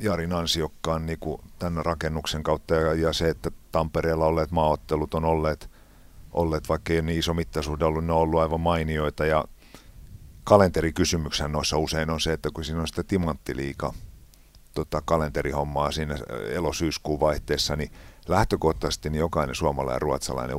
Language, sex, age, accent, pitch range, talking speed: Finnish, male, 50-69, native, 70-80 Hz, 135 wpm